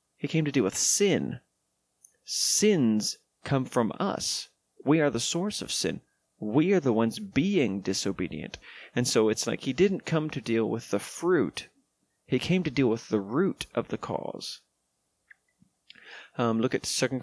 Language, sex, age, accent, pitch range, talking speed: English, male, 30-49, American, 105-150 Hz, 165 wpm